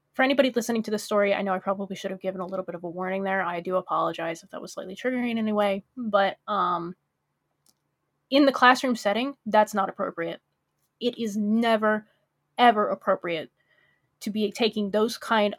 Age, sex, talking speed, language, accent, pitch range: 20-39, female, 195 wpm, English, American, 195-240 Hz